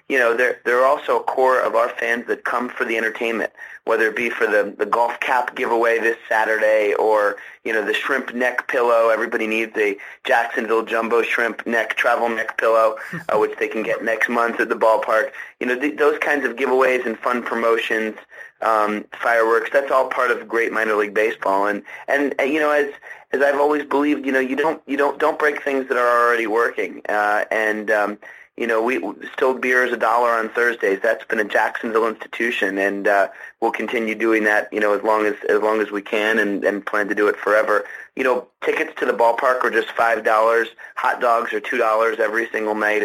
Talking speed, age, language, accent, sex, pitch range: 210 wpm, 30-49, English, American, male, 110-130 Hz